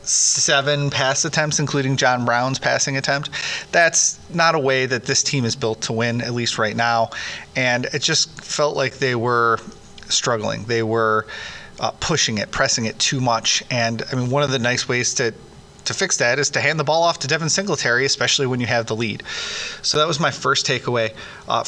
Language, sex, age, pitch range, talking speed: English, male, 30-49, 120-140 Hz, 205 wpm